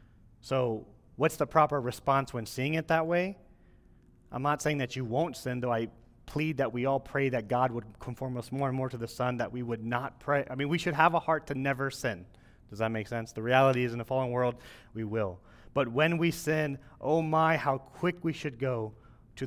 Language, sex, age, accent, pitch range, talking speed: English, male, 30-49, American, 115-145 Hz, 230 wpm